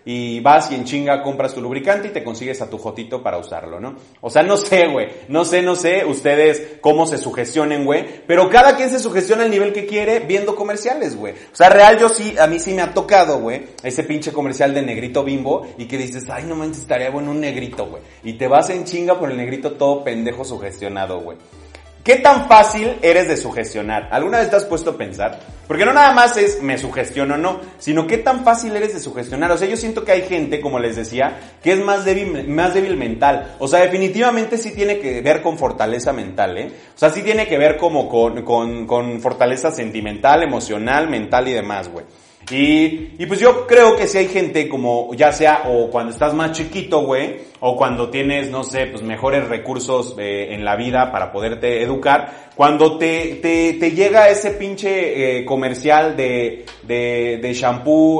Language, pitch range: Spanish, 125-180 Hz